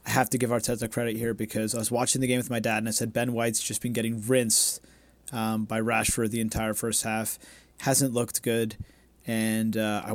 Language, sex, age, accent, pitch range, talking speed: English, male, 30-49, American, 110-130 Hz, 225 wpm